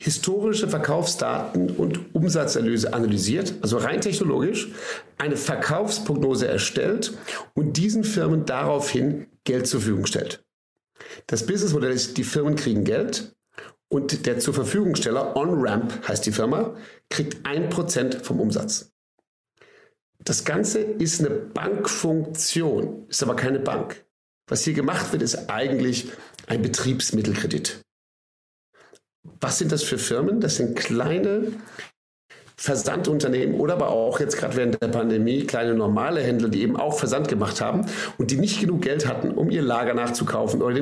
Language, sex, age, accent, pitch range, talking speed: German, male, 50-69, German, 115-185 Hz, 135 wpm